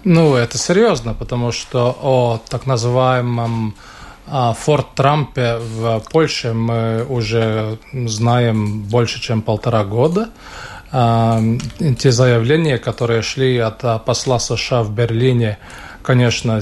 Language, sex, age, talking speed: Russian, male, 20-39, 105 wpm